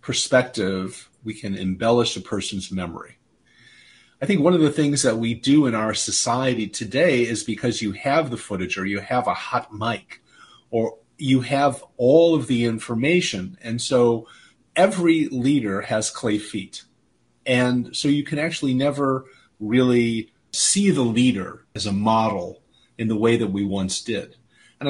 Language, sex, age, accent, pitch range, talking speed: English, male, 40-59, American, 105-135 Hz, 160 wpm